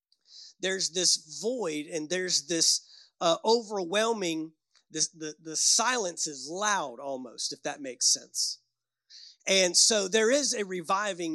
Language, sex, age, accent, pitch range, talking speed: English, male, 30-49, American, 170-230 Hz, 125 wpm